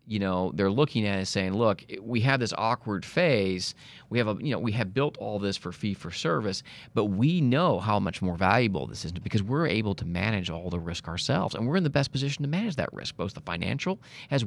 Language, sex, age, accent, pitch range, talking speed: English, male, 30-49, American, 90-125 Hz, 235 wpm